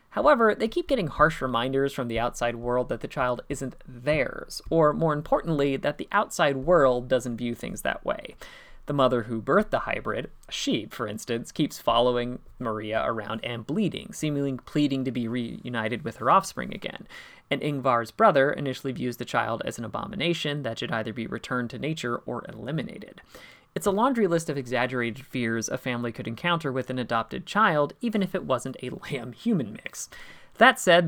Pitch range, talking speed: 125-165 Hz, 180 wpm